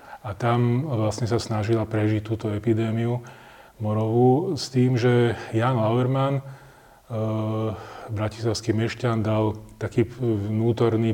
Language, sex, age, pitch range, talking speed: Slovak, male, 30-49, 110-120 Hz, 110 wpm